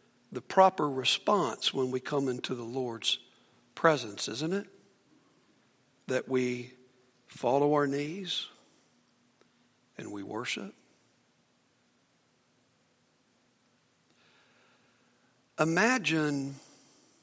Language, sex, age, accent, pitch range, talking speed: English, male, 60-79, American, 135-195 Hz, 75 wpm